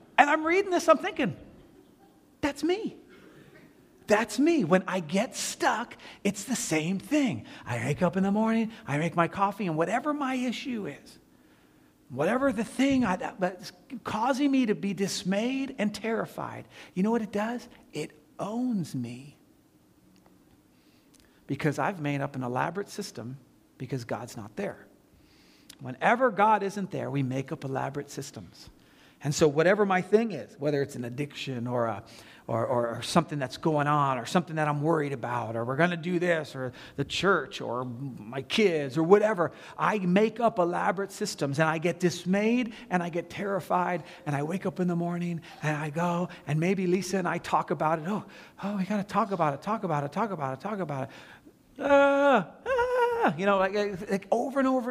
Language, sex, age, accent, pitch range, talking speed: English, male, 40-59, American, 150-220 Hz, 185 wpm